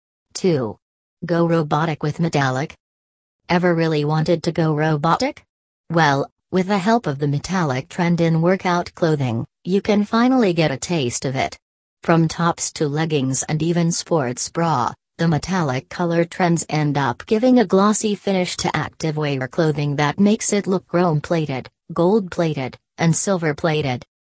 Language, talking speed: English, 150 wpm